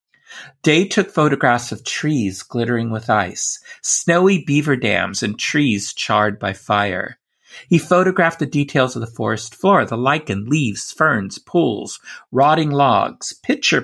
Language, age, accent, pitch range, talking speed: English, 50-69, American, 115-170 Hz, 140 wpm